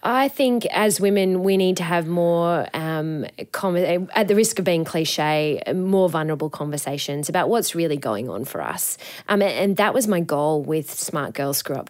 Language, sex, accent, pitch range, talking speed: English, female, Australian, 155-190 Hz, 185 wpm